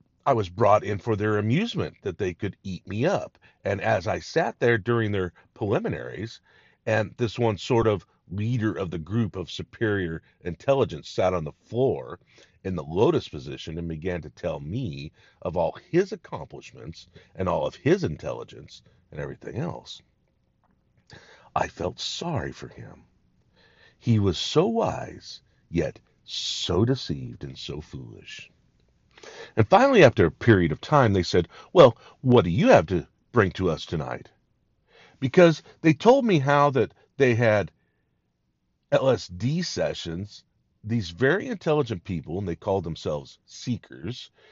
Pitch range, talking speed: 90-130 Hz, 150 wpm